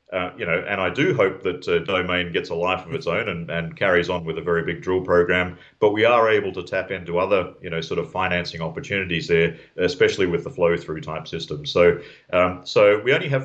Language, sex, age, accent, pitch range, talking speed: English, male, 40-59, Australian, 85-115 Hz, 240 wpm